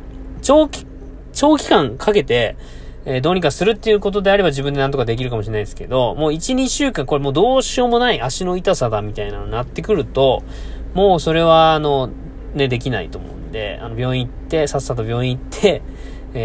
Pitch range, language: 120-180 Hz, Japanese